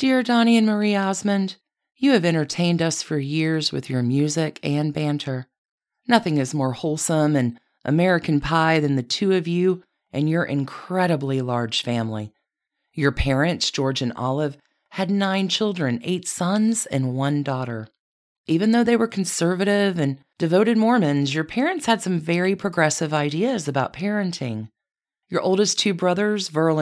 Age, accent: 40-59, American